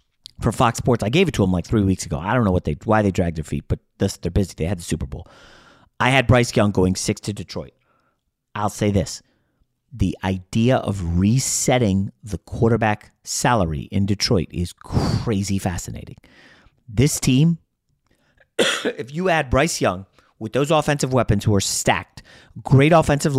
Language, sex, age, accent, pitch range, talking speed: English, male, 30-49, American, 100-145 Hz, 180 wpm